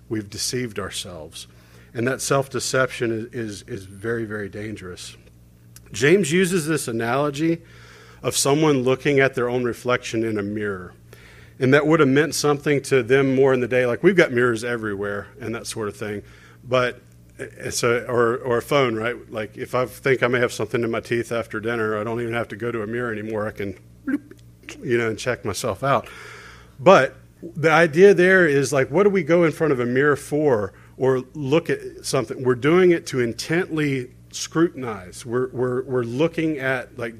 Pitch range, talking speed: 110-140 Hz, 190 wpm